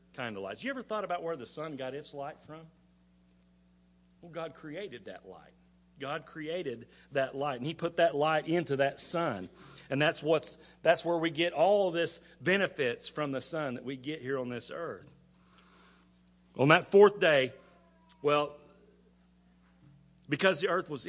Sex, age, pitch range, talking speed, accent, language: male, 40-59, 115-170 Hz, 175 wpm, American, English